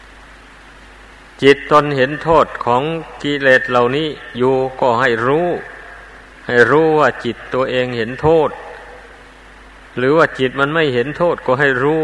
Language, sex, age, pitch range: Thai, male, 60-79, 115-145 Hz